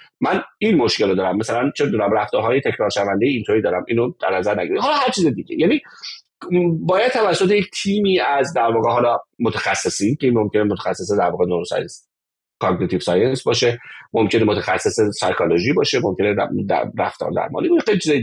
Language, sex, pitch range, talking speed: Persian, male, 135-210 Hz, 155 wpm